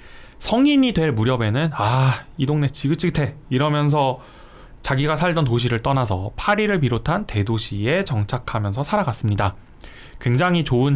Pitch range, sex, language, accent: 105-155 Hz, male, Korean, native